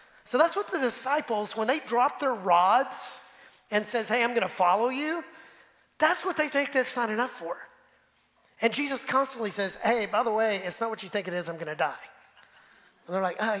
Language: English